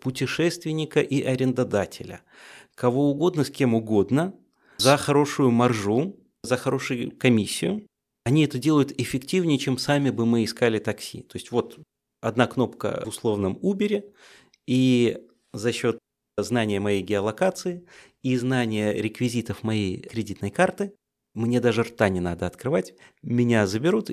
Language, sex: Russian, male